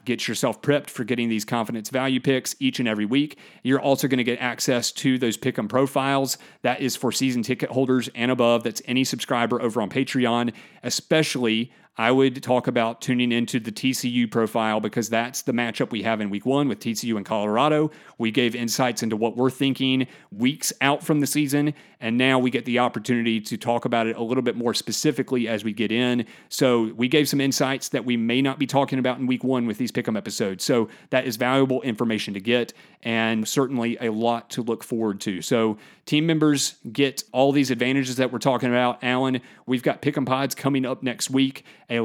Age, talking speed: 40-59, 210 wpm